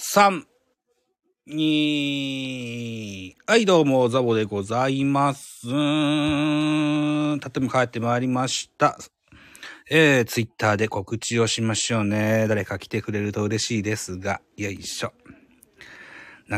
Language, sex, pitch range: Japanese, male, 110-150 Hz